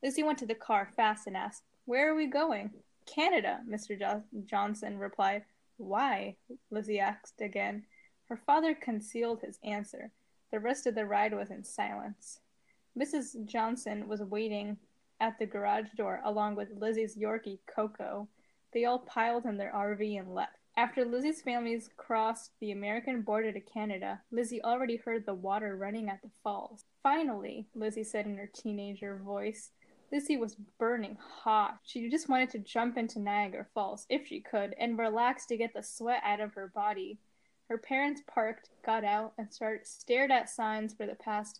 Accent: American